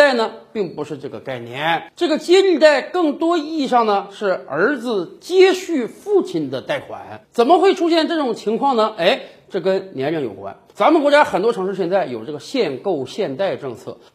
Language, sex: Chinese, male